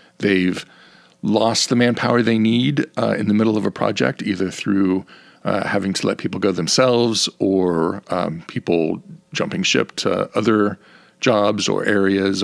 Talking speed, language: 155 wpm, English